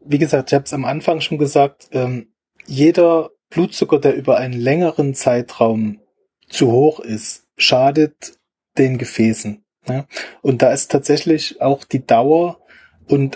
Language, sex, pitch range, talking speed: German, male, 135-160 Hz, 145 wpm